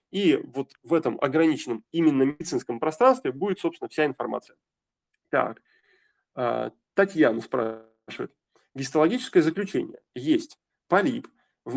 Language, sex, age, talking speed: Russian, male, 20-39, 100 wpm